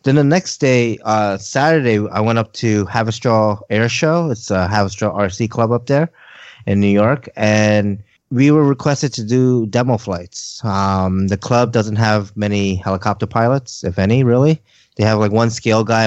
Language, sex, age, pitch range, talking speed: English, male, 20-39, 100-130 Hz, 185 wpm